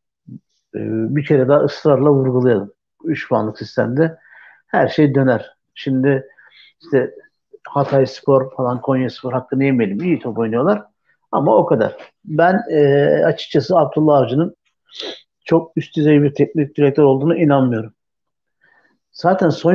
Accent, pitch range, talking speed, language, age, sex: native, 130-165 Hz, 125 wpm, Turkish, 60-79, male